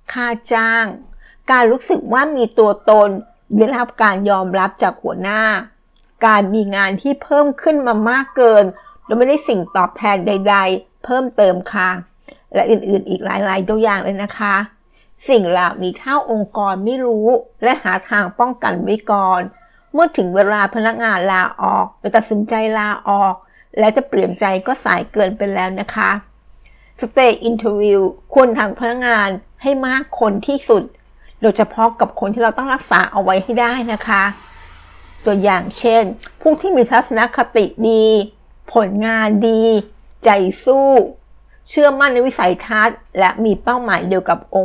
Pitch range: 195-235 Hz